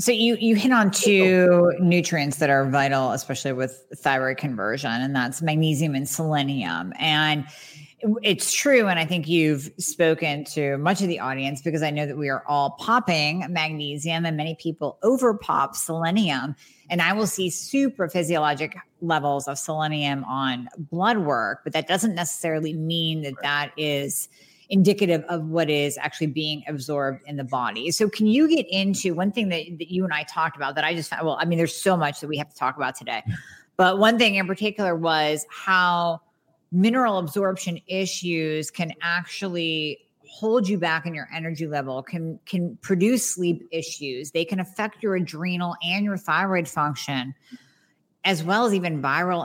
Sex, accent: female, American